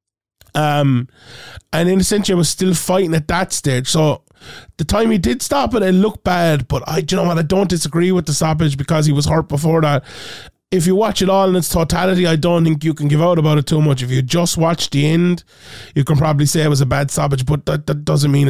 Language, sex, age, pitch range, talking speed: English, male, 20-39, 135-170 Hz, 255 wpm